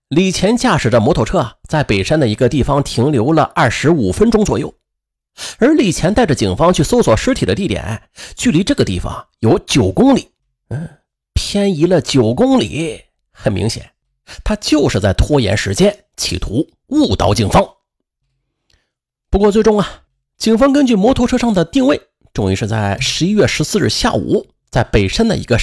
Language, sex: Chinese, male